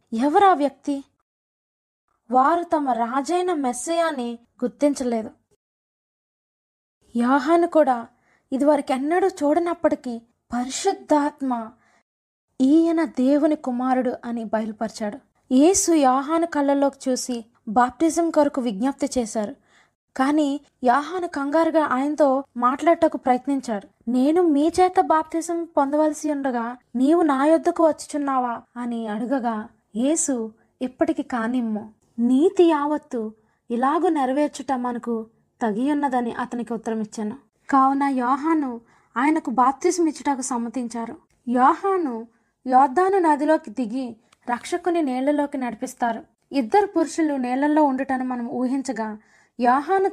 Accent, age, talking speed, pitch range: native, 20-39, 90 wpm, 245-310 Hz